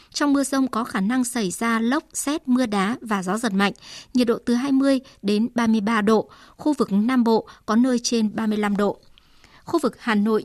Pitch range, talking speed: 215-255 Hz, 205 wpm